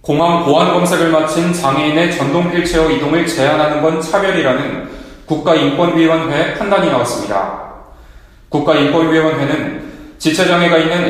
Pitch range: 145-170 Hz